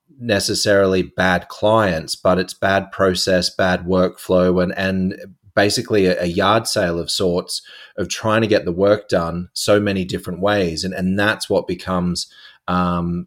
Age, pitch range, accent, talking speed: 30-49, 90-105 Hz, Australian, 155 wpm